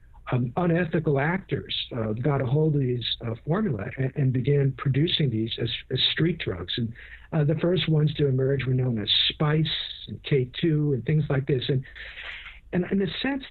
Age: 60-79